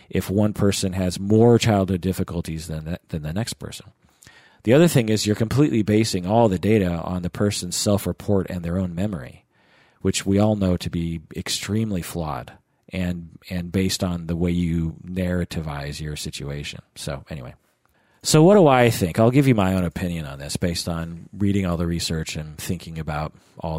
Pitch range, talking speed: 85-105 Hz, 185 wpm